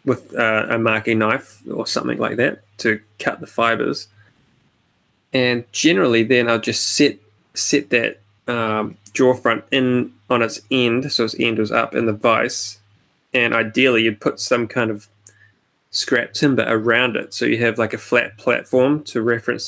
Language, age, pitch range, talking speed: English, 20-39, 105-120 Hz, 170 wpm